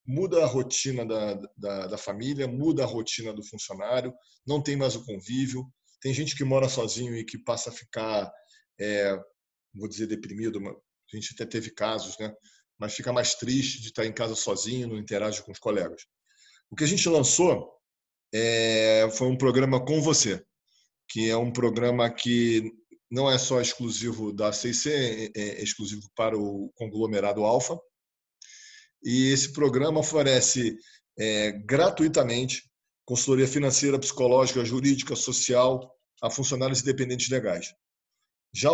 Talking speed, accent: 145 wpm, Brazilian